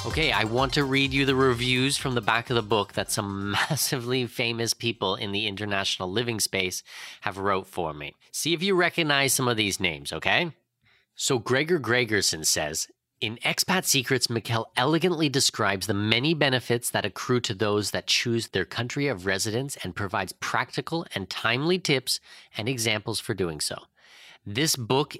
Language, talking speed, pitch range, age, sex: English, 175 wpm, 105-140 Hz, 30-49, male